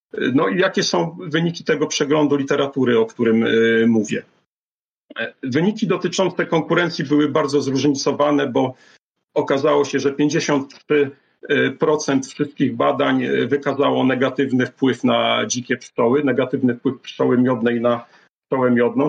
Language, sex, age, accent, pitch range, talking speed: Polish, male, 40-59, native, 130-150 Hz, 115 wpm